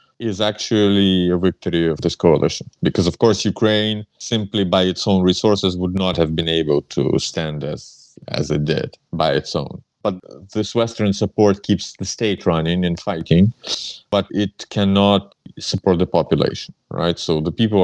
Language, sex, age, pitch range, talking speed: English, male, 30-49, 85-105 Hz, 170 wpm